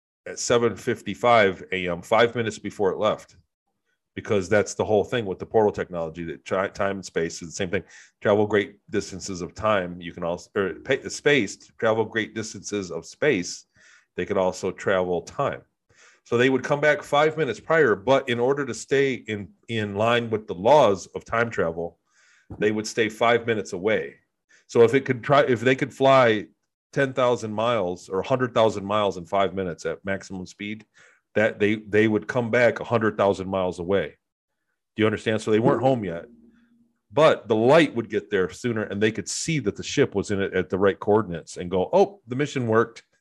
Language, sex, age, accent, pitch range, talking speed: English, male, 40-59, American, 95-120 Hz, 200 wpm